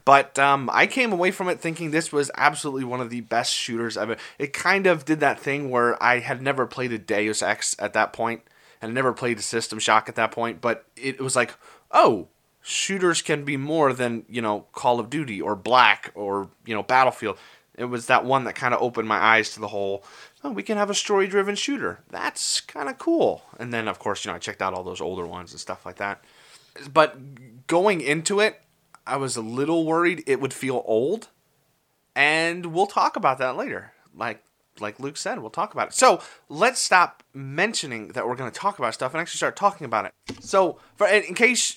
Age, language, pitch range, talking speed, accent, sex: 20-39, English, 120-165 Hz, 220 wpm, American, male